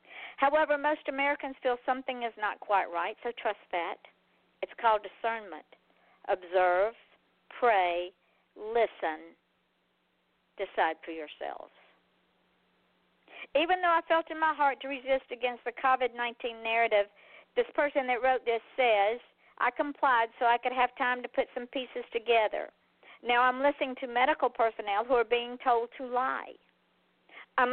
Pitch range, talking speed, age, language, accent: 225-270 Hz, 140 wpm, 50-69, English, American